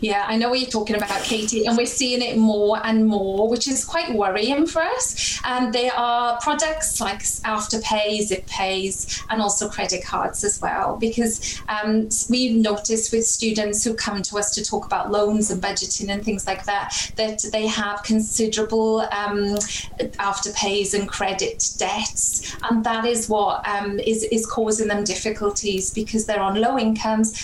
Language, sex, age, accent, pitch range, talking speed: English, female, 30-49, British, 205-225 Hz, 175 wpm